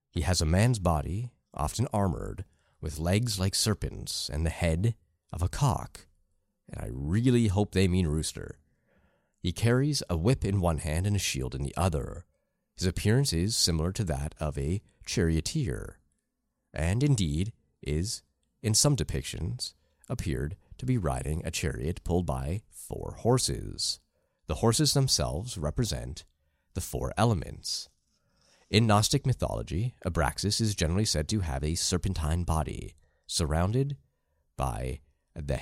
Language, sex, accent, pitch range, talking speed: English, male, American, 75-110 Hz, 140 wpm